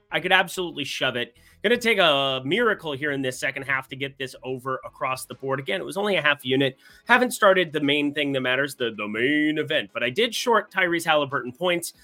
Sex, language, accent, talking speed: male, English, American, 230 wpm